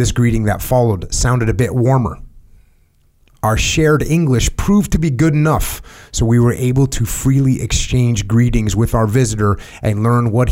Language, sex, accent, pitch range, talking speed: English, male, American, 100-130 Hz, 170 wpm